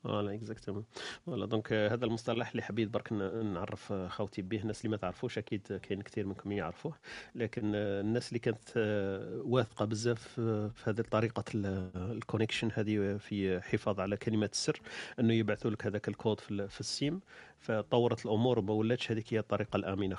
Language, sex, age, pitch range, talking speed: Arabic, male, 40-59, 100-115 Hz, 165 wpm